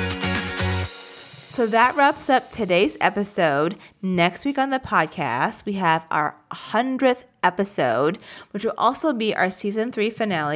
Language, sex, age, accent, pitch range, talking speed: English, female, 30-49, American, 170-225 Hz, 135 wpm